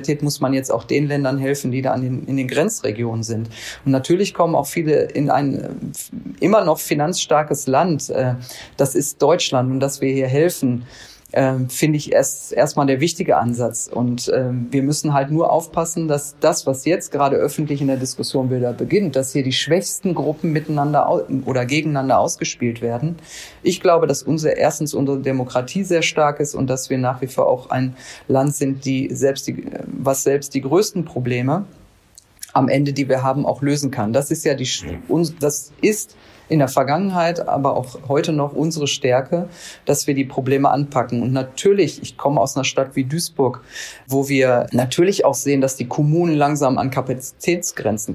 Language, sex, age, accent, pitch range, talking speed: German, female, 40-59, German, 130-155 Hz, 185 wpm